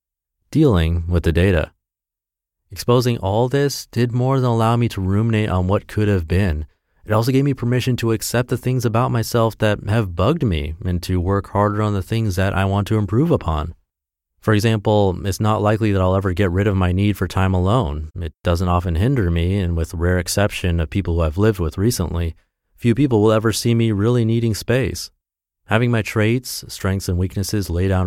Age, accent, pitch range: 30-49, American, 85-110 Hz